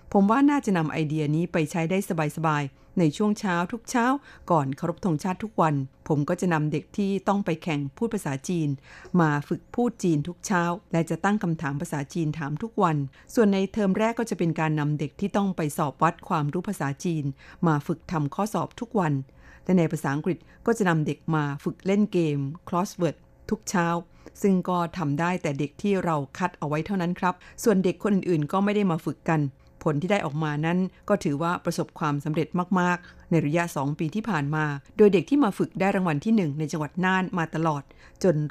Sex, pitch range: female, 155-190 Hz